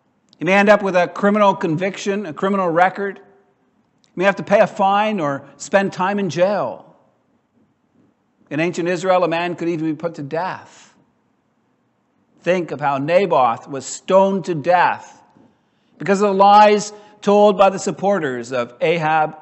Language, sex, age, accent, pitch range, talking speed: English, male, 50-69, American, 170-205 Hz, 160 wpm